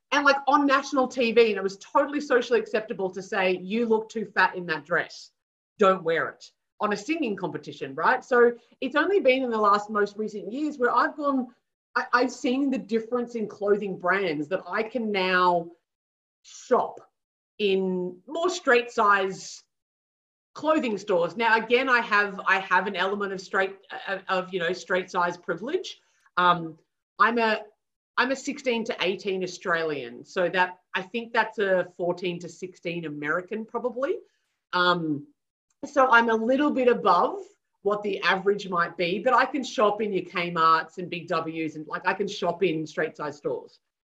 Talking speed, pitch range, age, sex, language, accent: 175 wpm, 180-245 Hz, 30-49, female, English, Australian